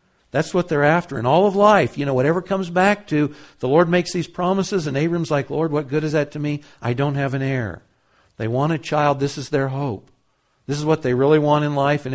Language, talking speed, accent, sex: English, 250 wpm, American, male